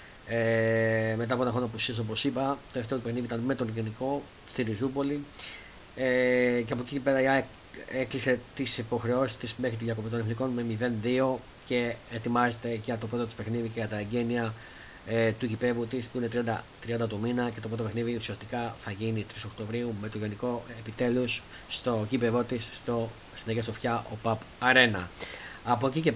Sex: male